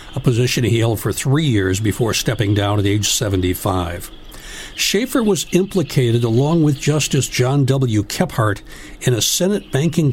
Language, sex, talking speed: English, male, 155 wpm